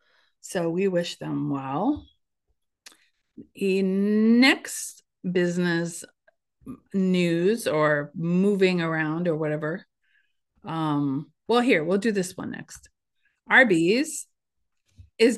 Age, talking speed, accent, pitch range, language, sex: 30-49, 95 wpm, American, 165-225 Hz, English, female